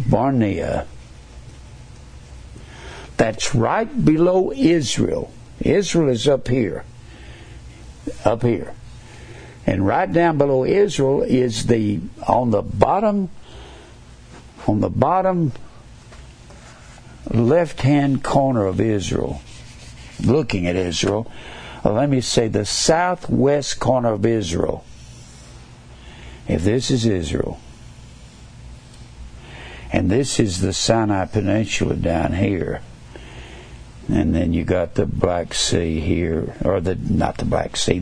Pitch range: 90-130 Hz